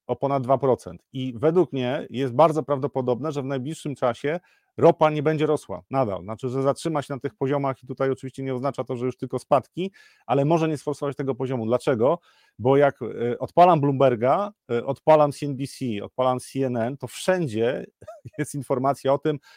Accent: native